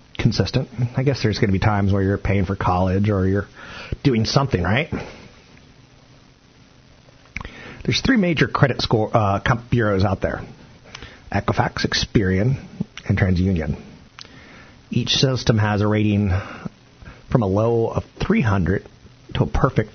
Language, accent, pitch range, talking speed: English, American, 100-125 Hz, 130 wpm